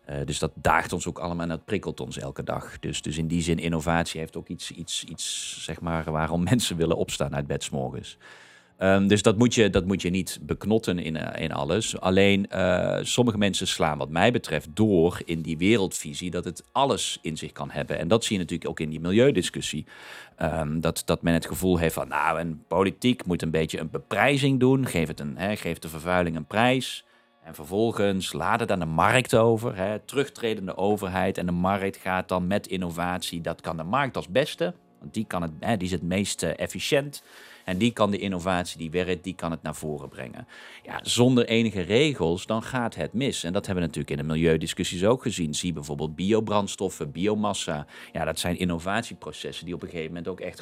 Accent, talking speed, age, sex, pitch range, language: Dutch, 205 wpm, 40-59, male, 80-100 Hz, Dutch